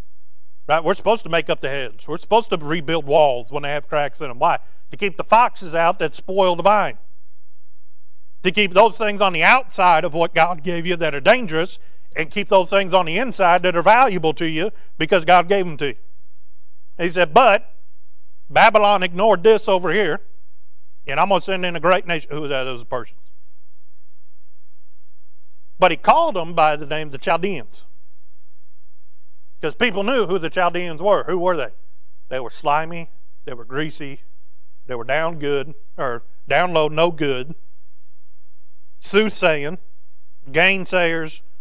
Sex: male